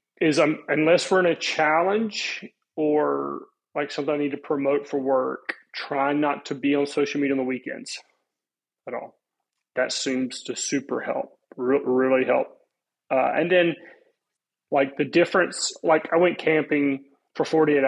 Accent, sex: American, male